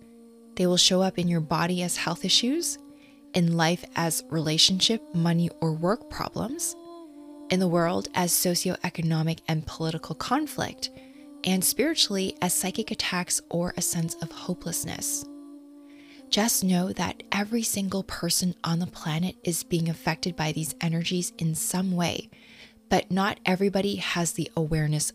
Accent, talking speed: American, 145 wpm